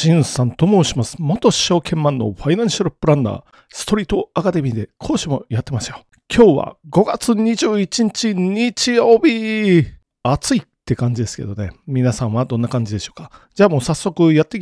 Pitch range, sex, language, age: 130-220 Hz, male, Japanese, 40-59